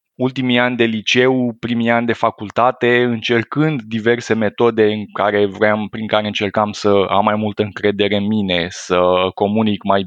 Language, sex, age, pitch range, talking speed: Romanian, male, 20-39, 105-155 Hz, 160 wpm